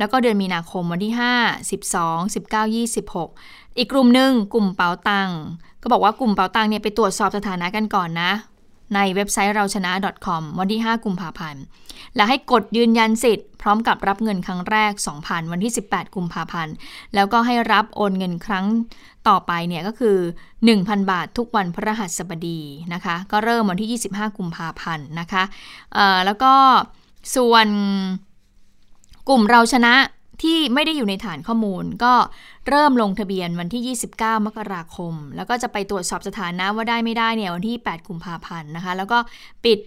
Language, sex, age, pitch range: Thai, female, 20-39, 180-225 Hz